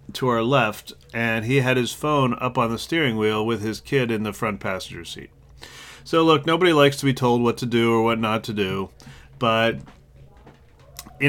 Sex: male